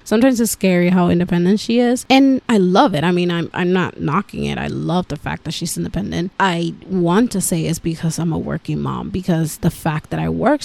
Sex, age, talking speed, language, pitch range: female, 20-39, 230 wpm, English, 170-215 Hz